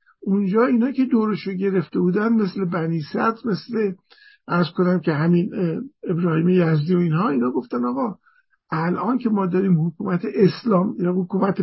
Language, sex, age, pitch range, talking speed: English, male, 50-69, 180-235 Hz, 150 wpm